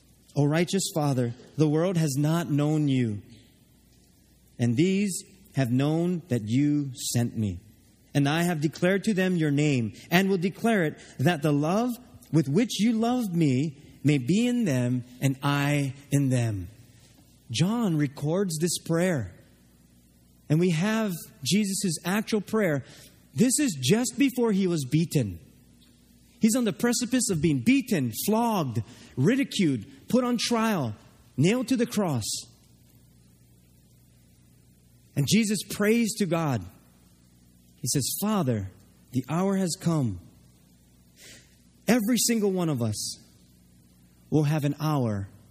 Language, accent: English, American